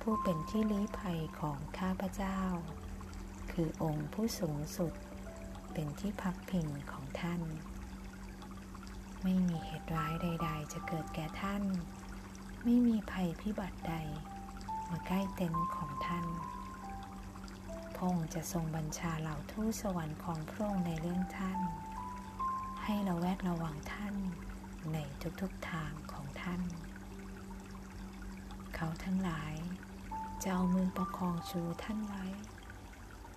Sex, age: female, 20-39